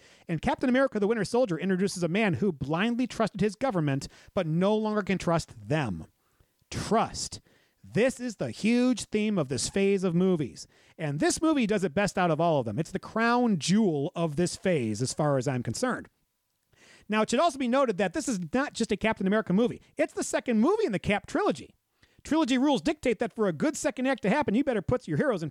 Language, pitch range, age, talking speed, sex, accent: English, 170-240 Hz, 40-59, 220 wpm, male, American